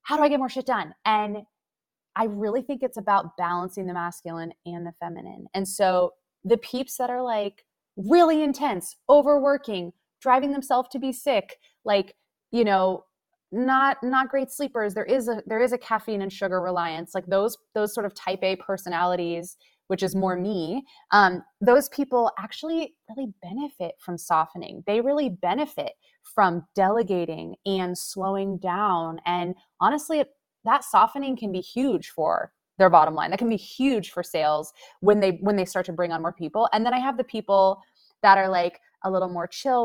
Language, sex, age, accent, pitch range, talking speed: English, female, 20-39, American, 180-255 Hz, 180 wpm